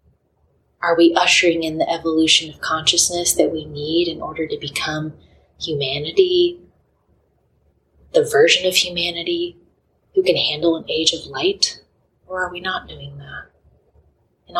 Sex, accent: female, American